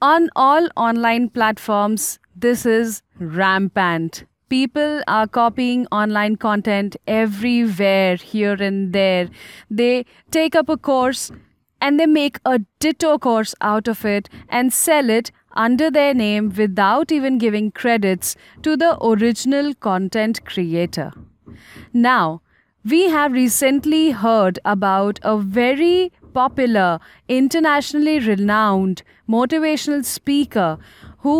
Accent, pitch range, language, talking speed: Indian, 210-275 Hz, English, 115 wpm